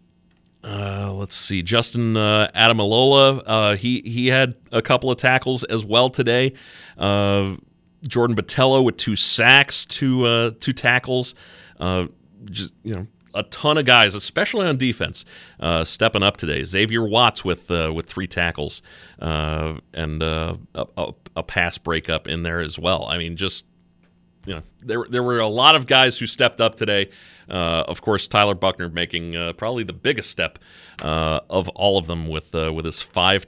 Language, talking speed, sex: English, 175 wpm, male